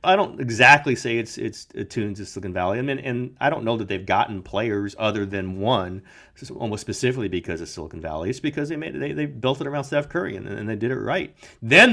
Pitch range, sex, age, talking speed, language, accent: 100-135 Hz, male, 30-49, 240 wpm, English, American